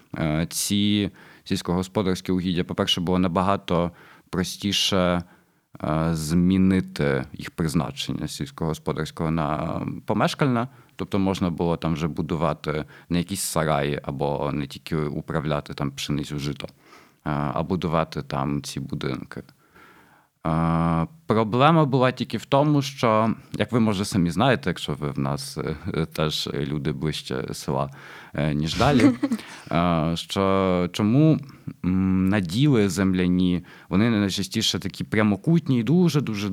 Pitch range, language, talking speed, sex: 80-115 Hz, Ukrainian, 115 wpm, male